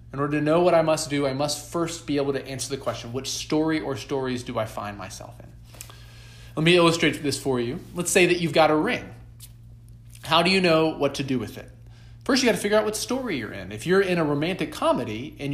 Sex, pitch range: male, 115-155 Hz